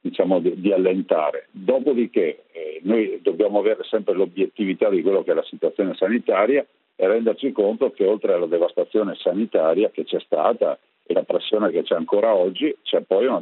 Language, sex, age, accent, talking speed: Italian, male, 50-69, native, 175 wpm